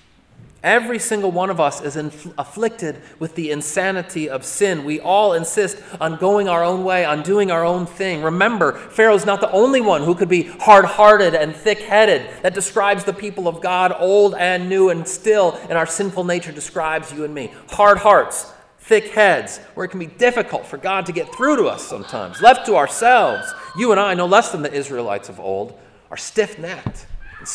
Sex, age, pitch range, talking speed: male, 30-49, 145-195 Hz, 195 wpm